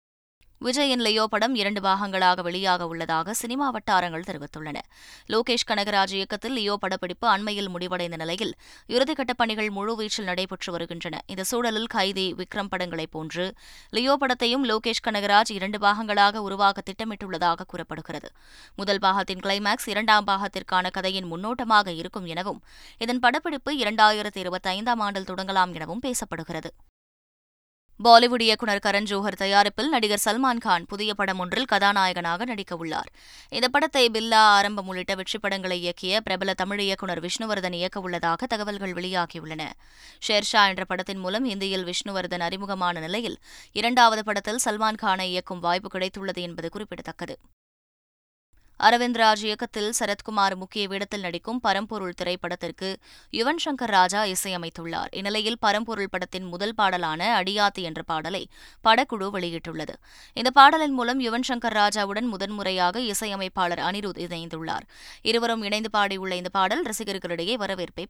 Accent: native